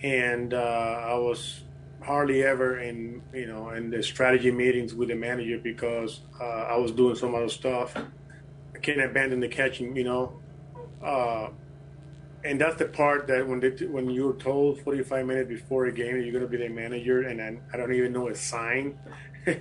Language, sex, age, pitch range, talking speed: English, male, 30-49, 125-140 Hz, 185 wpm